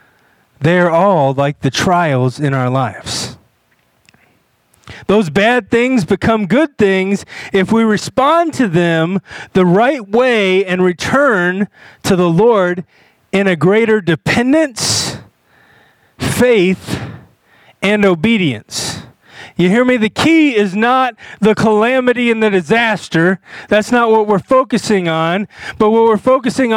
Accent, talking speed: American, 125 wpm